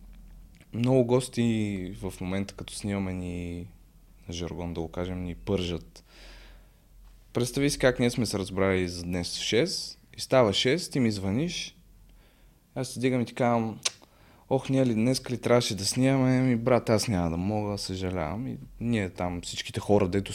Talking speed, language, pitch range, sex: 165 wpm, Bulgarian, 95-135 Hz, male